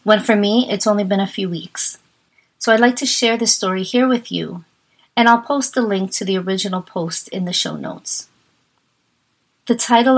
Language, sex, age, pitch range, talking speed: English, female, 30-49, 195-235 Hz, 200 wpm